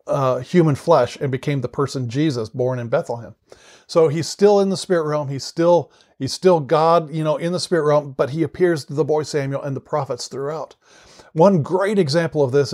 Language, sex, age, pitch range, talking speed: English, male, 40-59, 145-175 Hz, 210 wpm